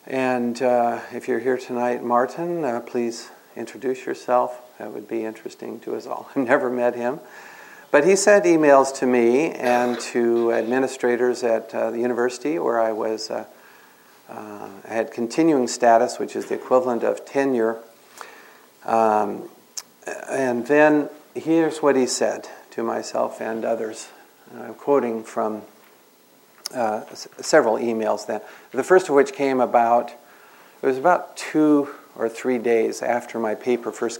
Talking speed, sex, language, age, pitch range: 150 wpm, male, English, 50-69, 115-130 Hz